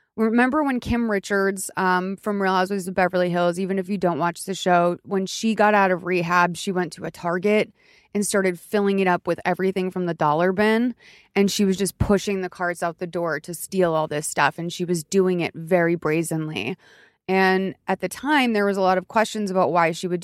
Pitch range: 175-200 Hz